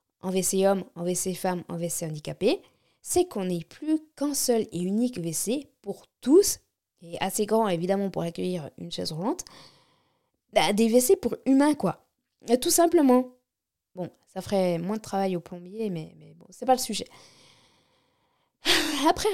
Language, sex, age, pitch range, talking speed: French, female, 20-39, 185-240 Hz, 170 wpm